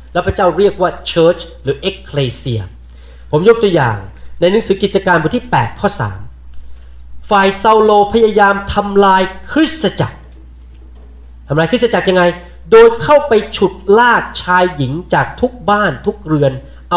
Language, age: Thai, 30-49